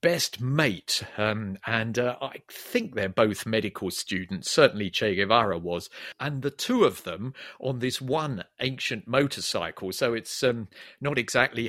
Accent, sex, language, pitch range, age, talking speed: British, male, English, 115-155 Hz, 50-69, 155 wpm